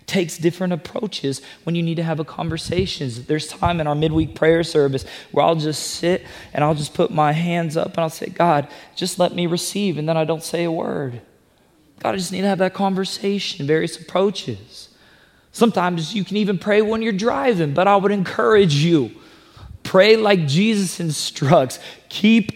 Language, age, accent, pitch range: English, 20-39, American, 160-205 Hz